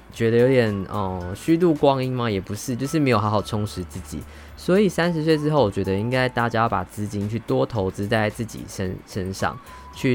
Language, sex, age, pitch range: Chinese, male, 20-39, 100-125 Hz